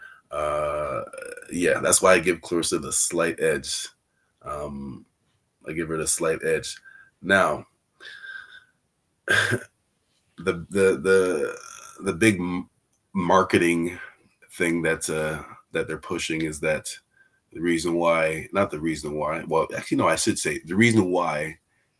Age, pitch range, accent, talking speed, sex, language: 30-49, 80-105 Hz, American, 130 wpm, male, English